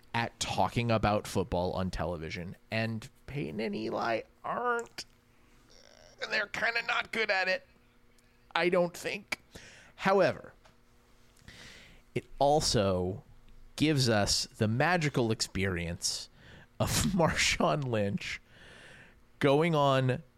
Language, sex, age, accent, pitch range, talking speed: English, male, 30-49, American, 115-155 Hz, 100 wpm